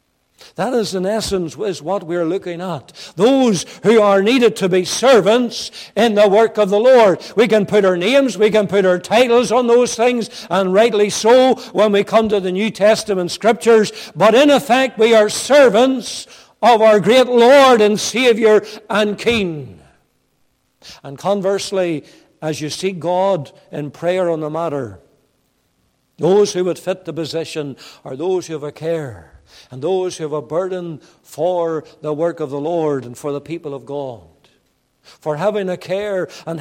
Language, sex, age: English, male, 60-79